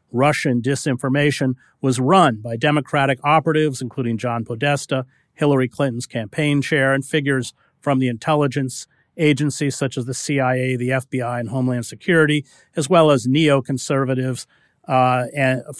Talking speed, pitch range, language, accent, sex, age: 130 wpm, 125-155 Hz, English, American, male, 40-59